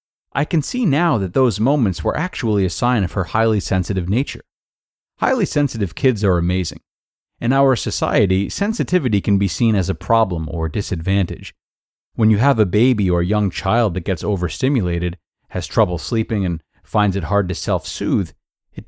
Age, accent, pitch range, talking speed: 30-49, American, 95-125 Hz, 170 wpm